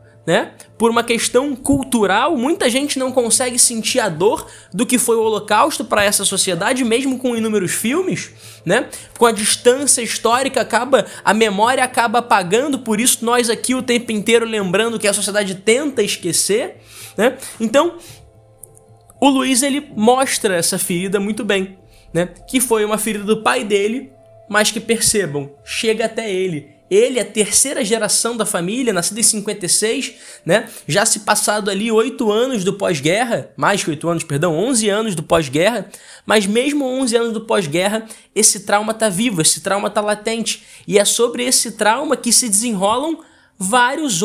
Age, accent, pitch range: 20-39, Brazilian, 200-245 Hz